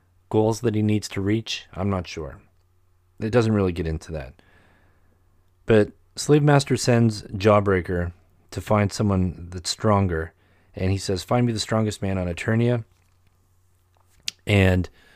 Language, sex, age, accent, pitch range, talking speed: English, male, 30-49, American, 90-105 Hz, 145 wpm